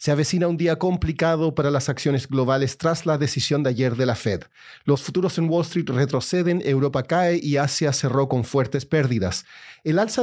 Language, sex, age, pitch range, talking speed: Spanish, male, 40-59, 135-165 Hz, 195 wpm